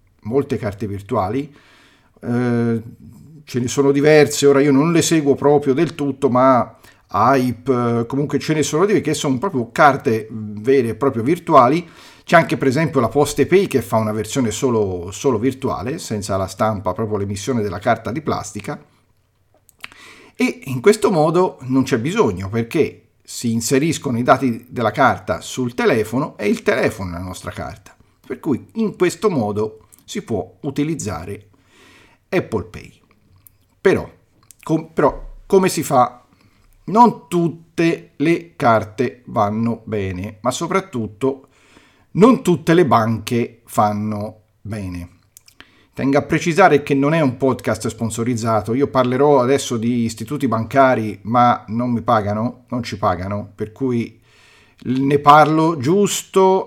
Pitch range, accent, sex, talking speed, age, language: 110-145 Hz, native, male, 140 wpm, 40-59, Italian